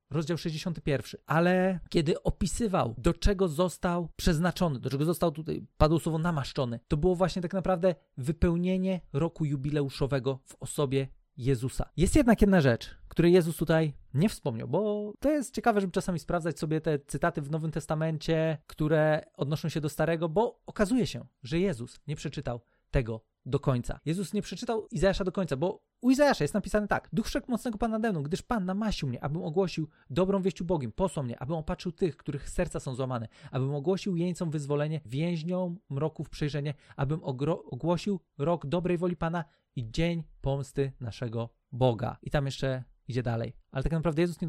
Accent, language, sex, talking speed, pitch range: native, Polish, male, 175 wpm, 140-180 Hz